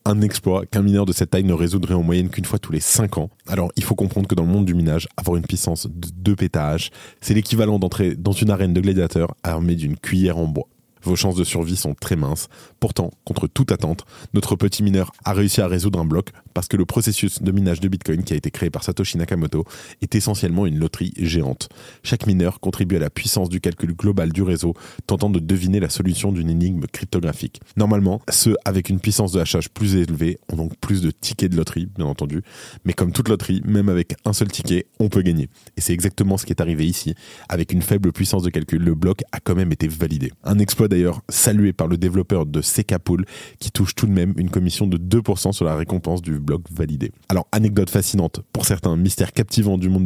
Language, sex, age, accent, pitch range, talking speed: French, male, 20-39, French, 85-100 Hz, 225 wpm